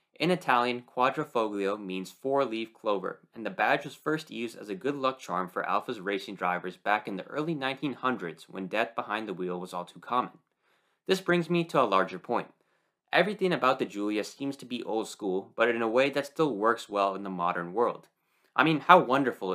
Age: 20-39